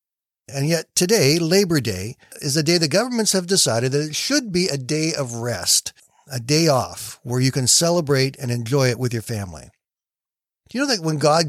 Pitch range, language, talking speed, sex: 135-170 Hz, English, 205 wpm, male